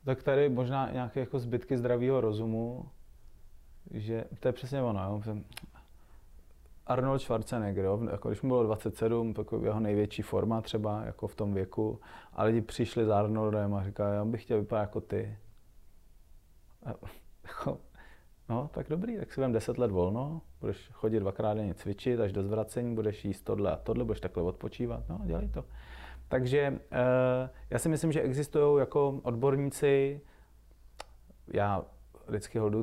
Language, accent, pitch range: Czech, native, 100-125 Hz